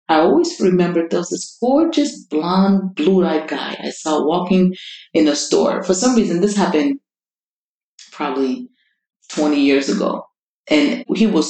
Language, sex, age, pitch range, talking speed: English, female, 30-49, 160-235 Hz, 150 wpm